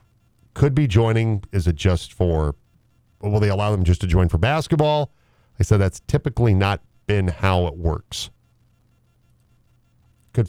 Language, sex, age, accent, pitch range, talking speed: English, male, 40-59, American, 90-115 Hz, 150 wpm